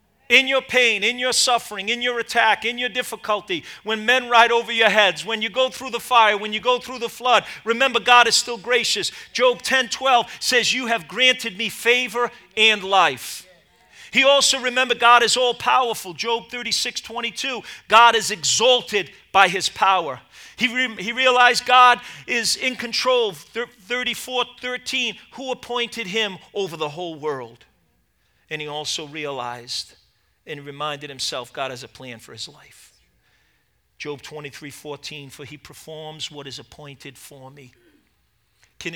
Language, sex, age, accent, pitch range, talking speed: English, male, 40-59, American, 140-240 Hz, 160 wpm